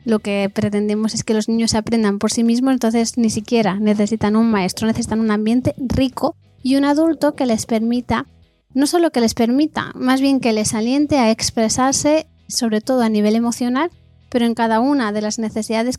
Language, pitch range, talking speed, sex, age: Spanish, 220-265 Hz, 195 wpm, female, 20-39